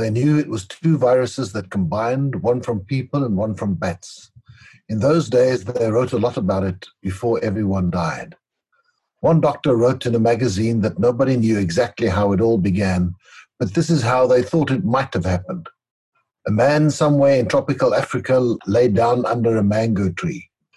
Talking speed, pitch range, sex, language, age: 180 wpm, 100-130 Hz, male, English, 60-79